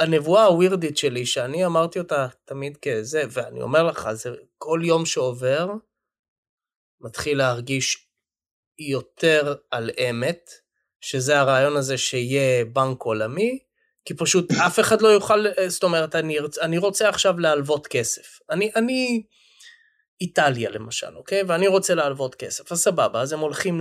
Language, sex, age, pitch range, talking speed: English, male, 20-39, 130-220 Hz, 130 wpm